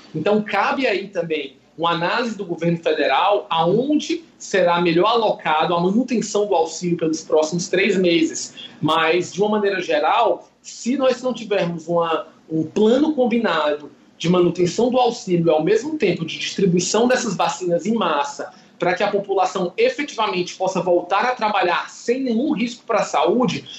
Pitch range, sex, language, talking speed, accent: 175-235 Hz, male, Portuguese, 155 wpm, Brazilian